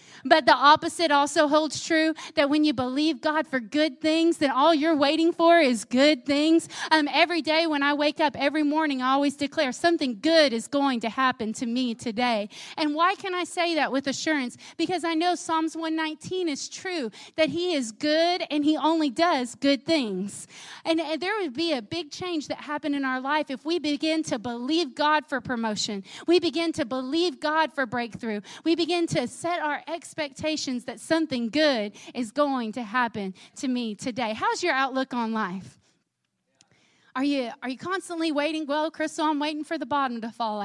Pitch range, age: 245-315 Hz, 30-49